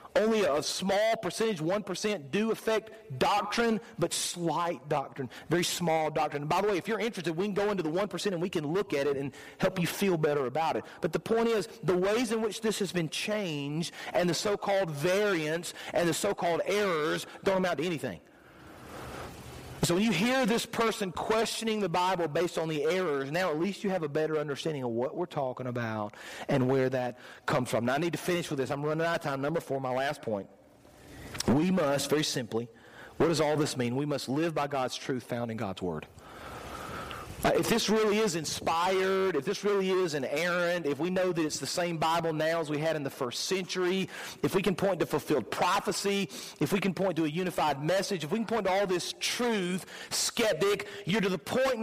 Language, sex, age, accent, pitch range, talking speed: English, male, 40-59, American, 150-205 Hz, 215 wpm